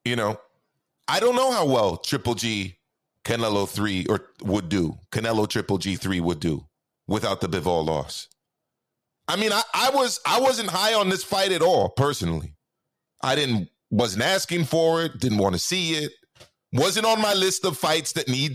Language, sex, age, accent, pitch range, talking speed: English, male, 30-49, American, 120-170 Hz, 185 wpm